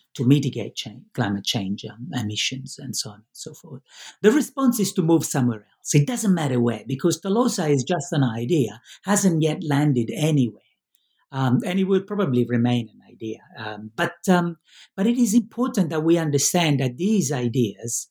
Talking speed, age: 170 wpm, 60-79